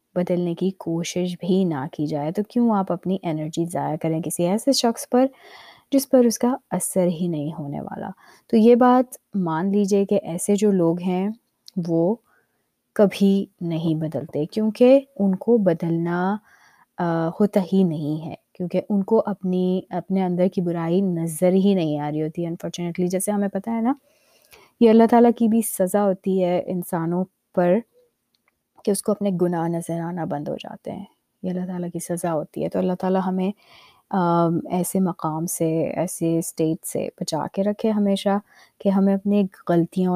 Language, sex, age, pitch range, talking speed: Urdu, female, 20-39, 170-205 Hz, 170 wpm